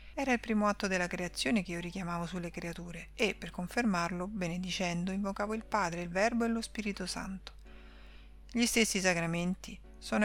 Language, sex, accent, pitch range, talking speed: Italian, female, native, 170-200 Hz, 165 wpm